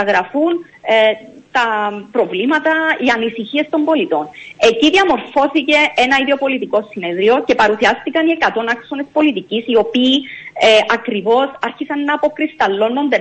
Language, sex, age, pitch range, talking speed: Greek, female, 30-49, 220-295 Hz, 110 wpm